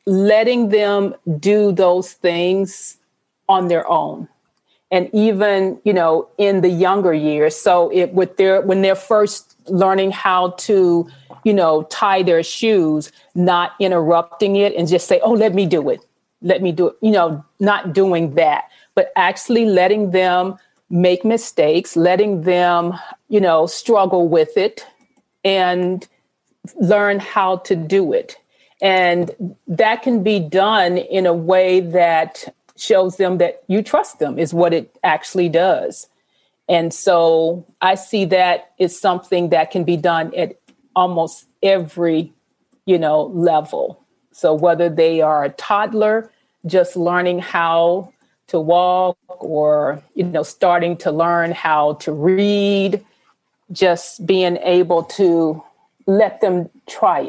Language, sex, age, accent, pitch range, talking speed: English, female, 40-59, American, 170-200 Hz, 140 wpm